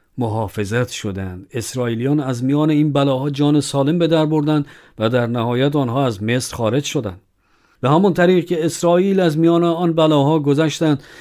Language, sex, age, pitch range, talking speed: Persian, male, 50-69, 115-155 Hz, 155 wpm